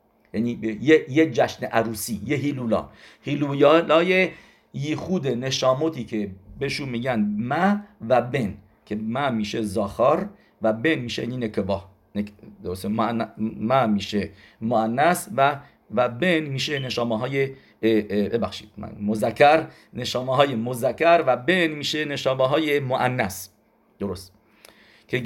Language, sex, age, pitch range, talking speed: English, male, 50-69, 110-155 Hz, 115 wpm